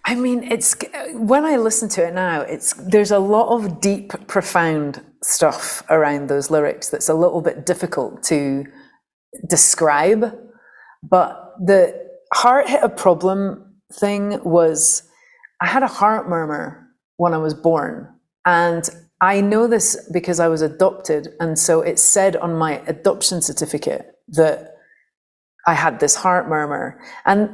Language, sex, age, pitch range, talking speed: English, female, 30-49, 160-205 Hz, 145 wpm